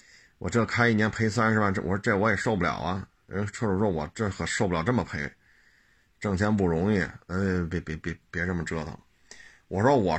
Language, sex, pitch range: Chinese, male, 95-120 Hz